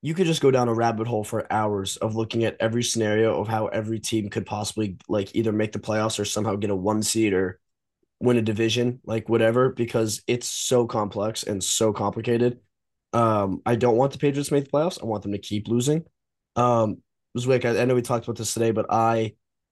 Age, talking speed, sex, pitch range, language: 20-39, 220 wpm, male, 105-120 Hz, English